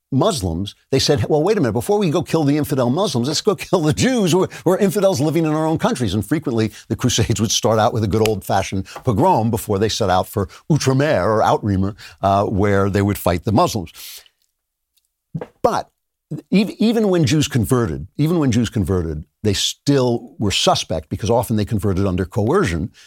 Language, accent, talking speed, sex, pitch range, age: English, American, 190 wpm, male, 100-140 Hz, 60-79